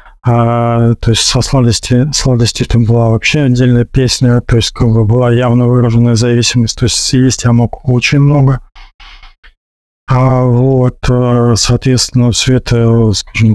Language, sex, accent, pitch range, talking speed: Russian, male, native, 120-130 Hz, 135 wpm